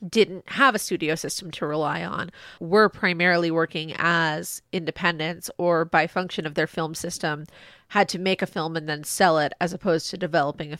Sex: female